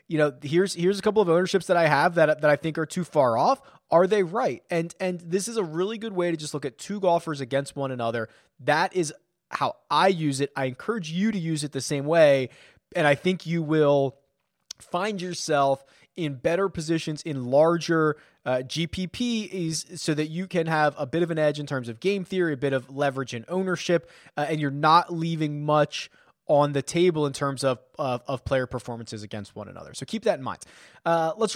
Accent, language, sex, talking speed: American, English, male, 220 wpm